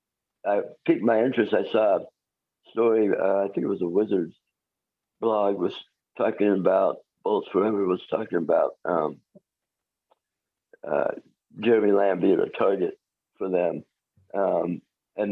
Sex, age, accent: male, 60-79, American